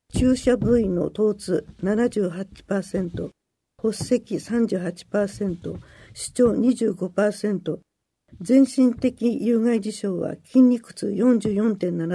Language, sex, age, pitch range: Japanese, female, 60-79, 195-250 Hz